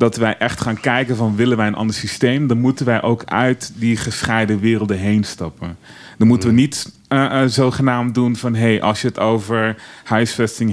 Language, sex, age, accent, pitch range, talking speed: Dutch, male, 30-49, Dutch, 105-125 Hz, 200 wpm